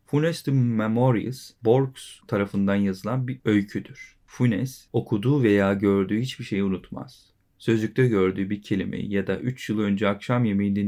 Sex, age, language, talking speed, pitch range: male, 40-59, Turkish, 140 wpm, 100-125 Hz